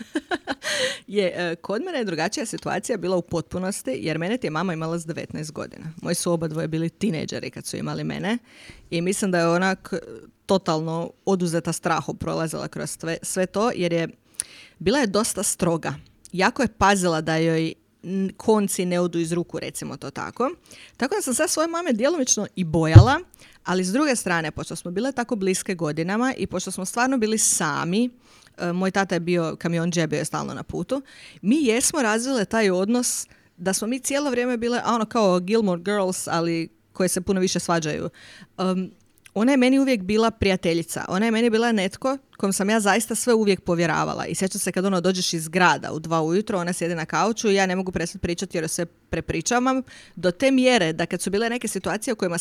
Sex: female